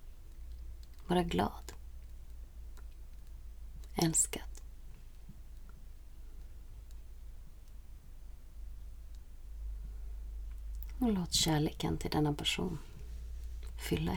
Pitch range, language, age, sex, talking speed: 65-95 Hz, Swedish, 30-49, female, 40 wpm